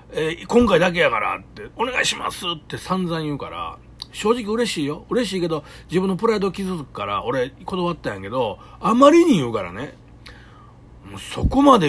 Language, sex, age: Japanese, male, 40-59